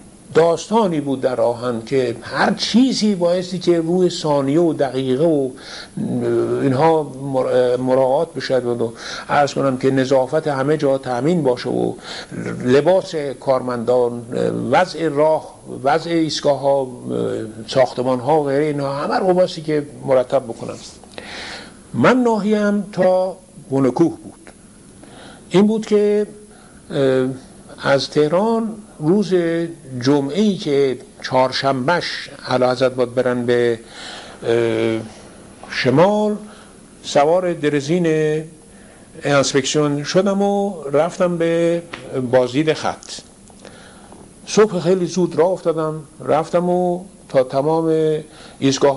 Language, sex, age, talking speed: Persian, male, 60-79, 100 wpm